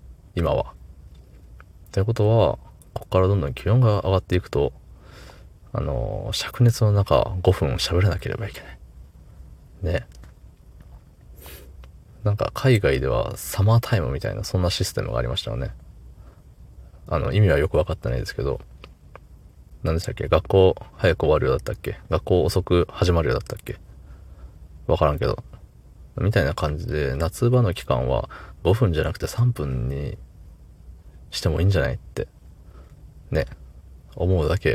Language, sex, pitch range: Japanese, male, 75-100 Hz